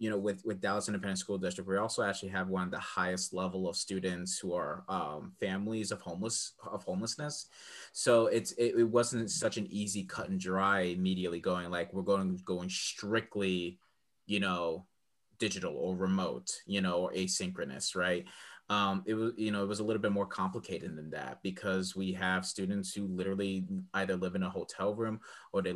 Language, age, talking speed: English, 30-49, 190 wpm